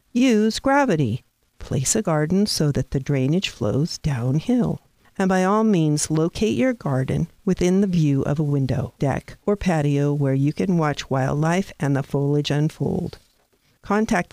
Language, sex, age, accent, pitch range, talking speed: English, female, 50-69, American, 140-180 Hz, 155 wpm